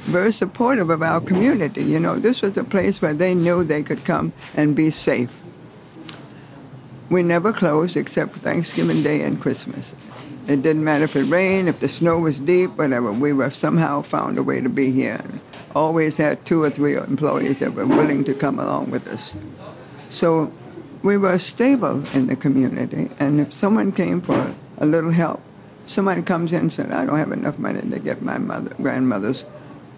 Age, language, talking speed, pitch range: 60-79, English, 190 wpm, 145-200 Hz